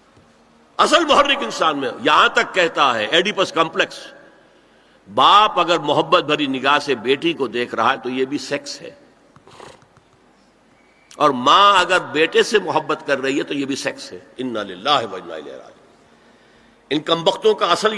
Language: Urdu